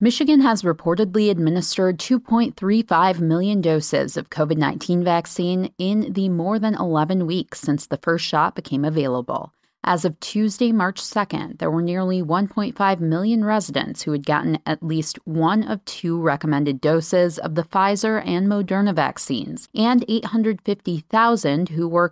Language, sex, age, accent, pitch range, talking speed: English, female, 30-49, American, 160-205 Hz, 145 wpm